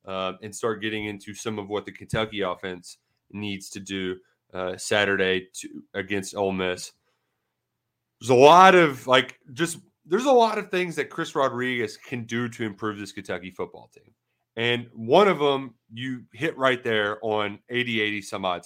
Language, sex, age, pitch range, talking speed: English, male, 30-49, 105-140 Hz, 175 wpm